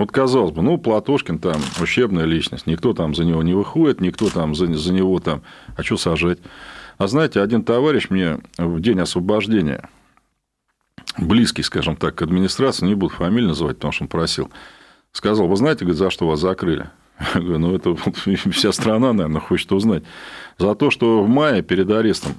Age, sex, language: 40-59, male, Russian